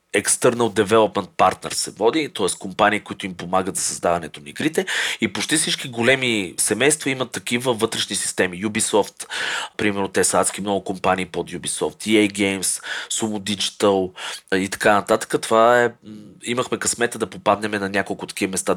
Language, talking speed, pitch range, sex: Bulgarian, 155 wpm, 95-120 Hz, male